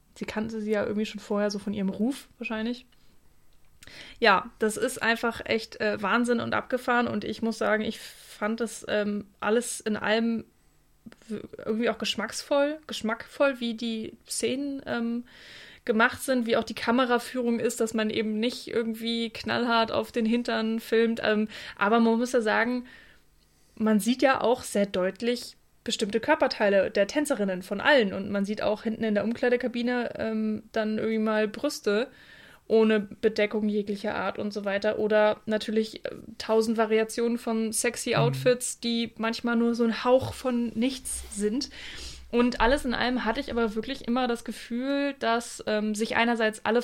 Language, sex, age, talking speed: German, female, 20-39, 165 wpm